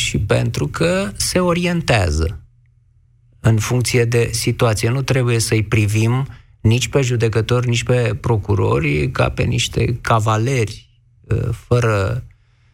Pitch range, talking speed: 110-130 Hz, 115 wpm